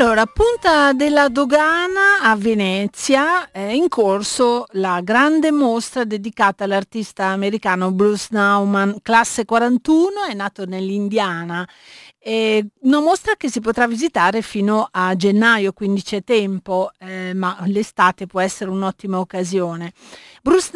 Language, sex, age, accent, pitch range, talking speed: Italian, female, 40-59, native, 195-275 Hz, 120 wpm